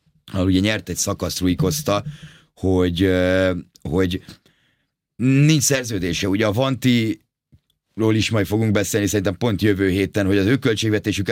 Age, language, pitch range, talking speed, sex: 30-49, Hungarian, 90-110 Hz, 125 wpm, male